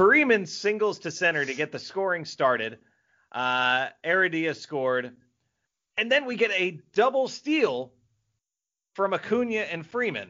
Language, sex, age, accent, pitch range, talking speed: English, male, 30-49, American, 145-215 Hz, 135 wpm